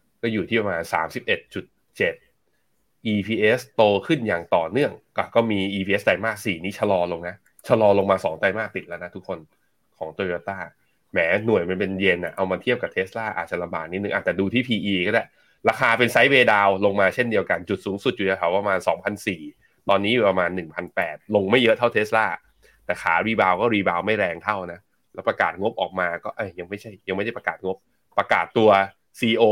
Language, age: Thai, 20-39